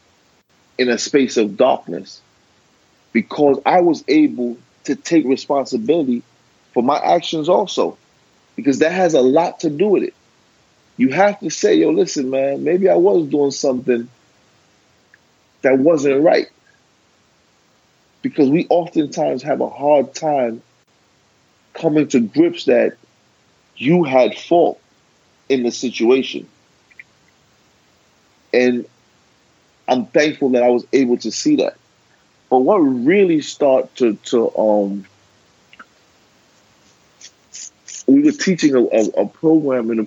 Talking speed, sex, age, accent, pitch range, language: 125 wpm, male, 40-59, American, 115-160 Hz, English